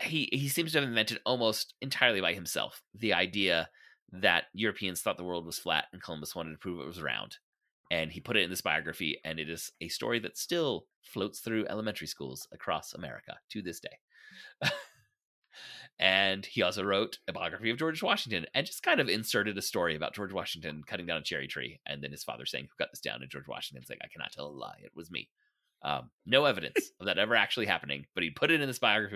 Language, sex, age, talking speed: English, male, 30-49, 230 wpm